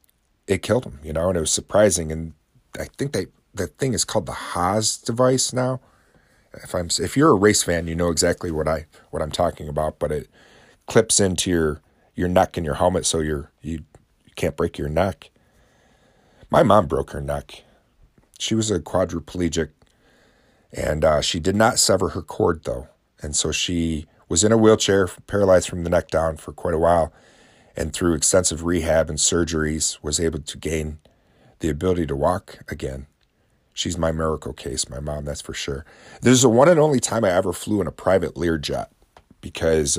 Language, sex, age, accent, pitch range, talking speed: English, male, 40-59, American, 80-95 Hz, 195 wpm